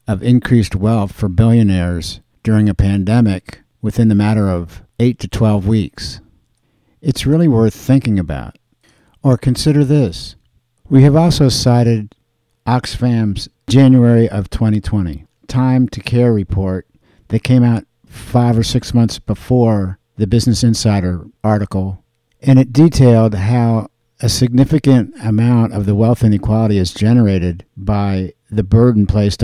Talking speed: 130 wpm